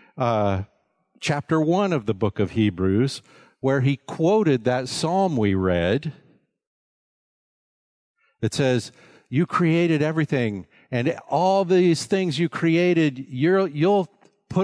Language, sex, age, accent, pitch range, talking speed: English, male, 50-69, American, 110-175 Hz, 110 wpm